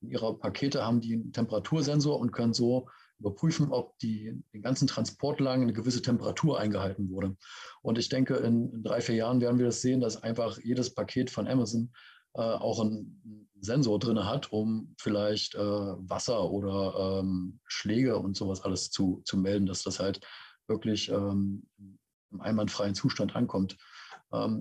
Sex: male